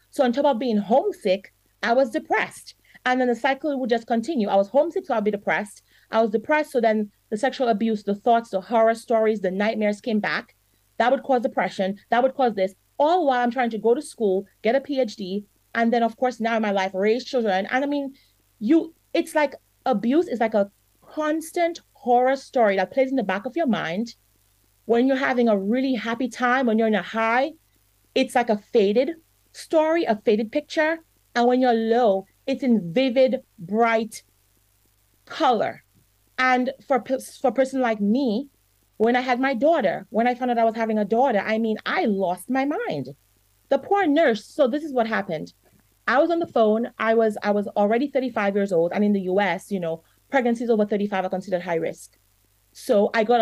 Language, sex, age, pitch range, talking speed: English, female, 30-49, 205-260 Hz, 210 wpm